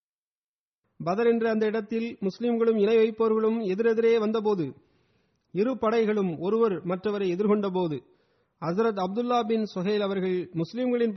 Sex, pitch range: male, 175-220 Hz